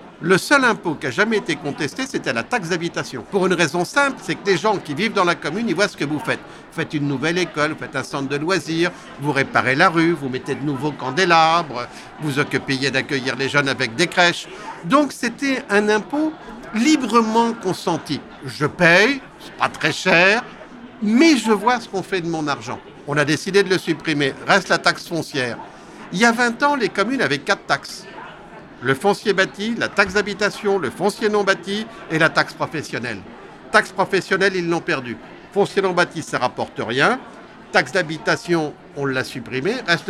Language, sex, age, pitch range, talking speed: French, male, 60-79, 145-200 Hz, 200 wpm